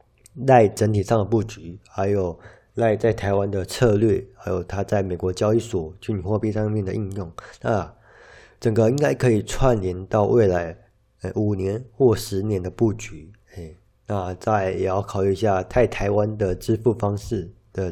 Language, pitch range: Chinese, 95-110 Hz